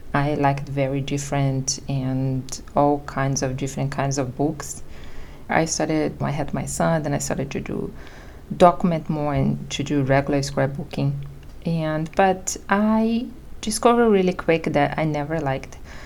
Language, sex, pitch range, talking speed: English, female, 140-165 Hz, 150 wpm